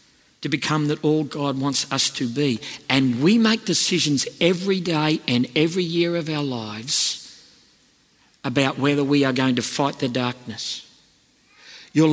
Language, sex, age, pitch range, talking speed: English, male, 50-69, 145-205 Hz, 155 wpm